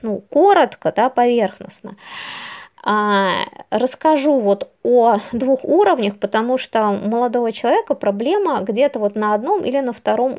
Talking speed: 135 wpm